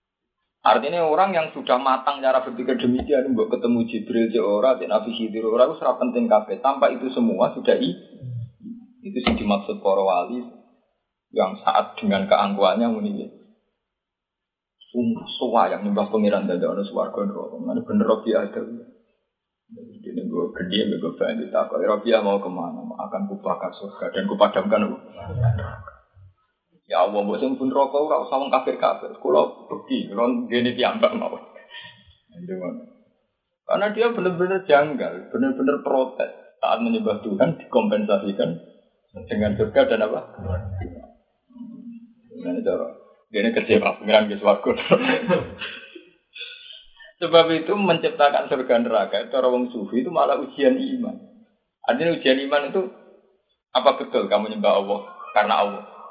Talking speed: 135 wpm